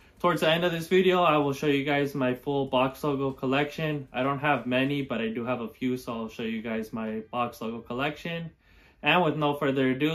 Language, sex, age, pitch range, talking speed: Vietnamese, male, 20-39, 125-155 Hz, 235 wpm